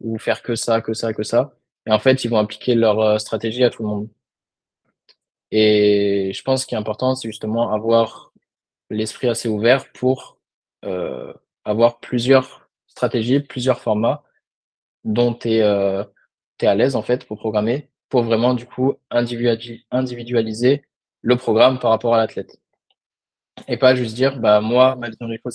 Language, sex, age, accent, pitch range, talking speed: French, male, 20-39, French, 110-125 Hz, 160 wpm